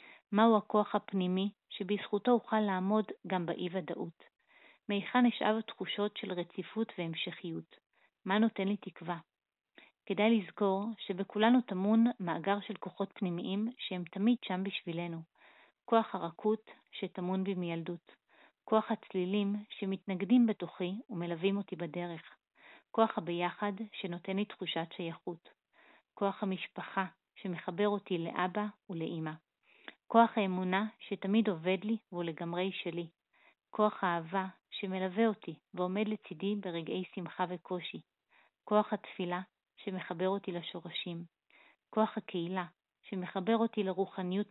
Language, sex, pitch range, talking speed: Hebrew, female, 175-210 Hz, 110 wpm